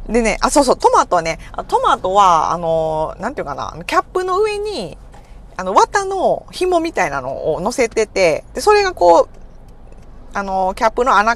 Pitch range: 155-250 Hz